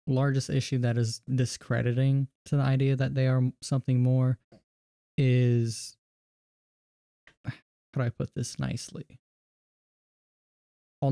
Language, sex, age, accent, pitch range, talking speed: English, male, 10-29, American, 120-135 Hz, 115 wpm